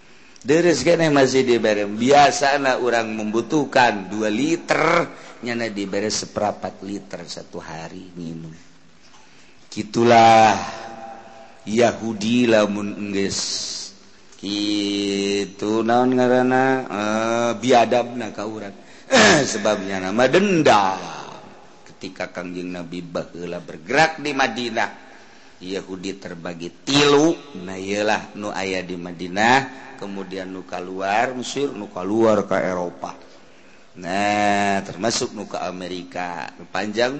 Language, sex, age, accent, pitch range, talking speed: Indonesian, male, 50-69, native, 95-120 Hz, 85 wpm